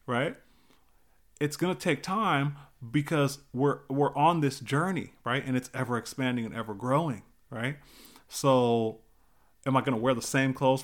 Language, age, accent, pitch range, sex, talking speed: English, 30-49, American, 125-160 Hz, male, 165 wpm